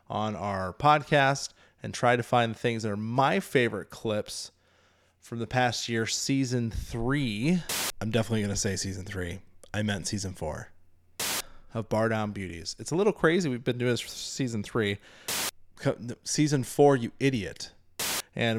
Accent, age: American, 20-39